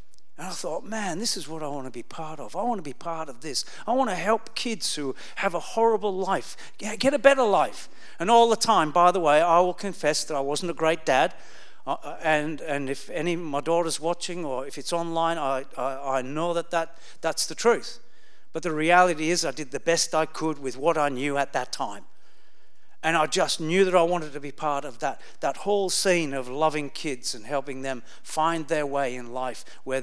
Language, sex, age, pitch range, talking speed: English, male, 50-69, 140-180 Hz, 225 wpm